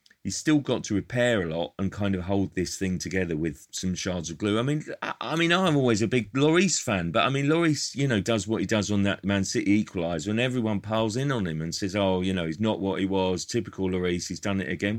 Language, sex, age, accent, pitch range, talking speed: English, male, 40-59, British, 90-120 Hz, 275 wpm